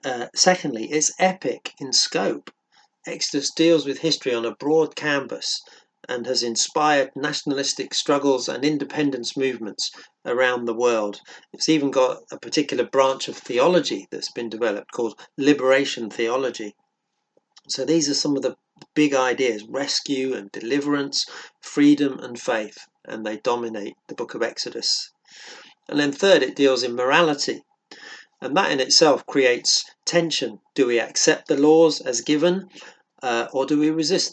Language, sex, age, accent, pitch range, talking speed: English, male, 40-59, British, 125-150 Hz, 150 wpm